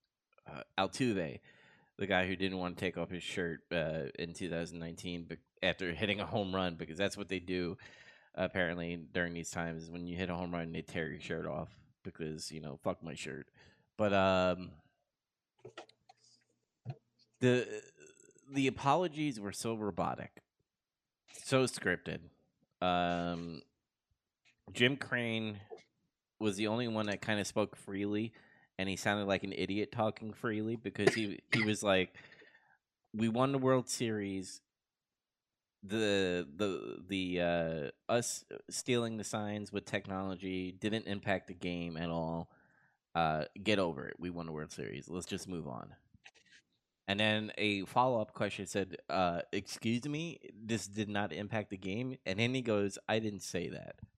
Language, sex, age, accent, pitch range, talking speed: English, male, 20-39, American, 90-110 Hz, 155 wpm